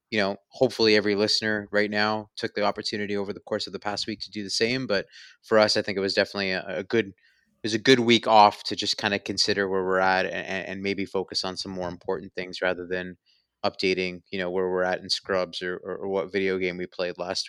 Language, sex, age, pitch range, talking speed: English, male, 20-39, 95-110 Hz, 255 wpm